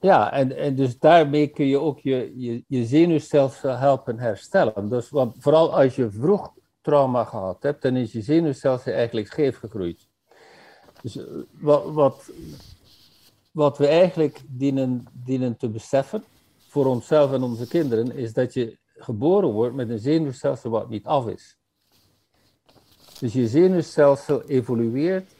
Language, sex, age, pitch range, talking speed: Dutch, male, 60-79, 115-150 Hz, 140 wpm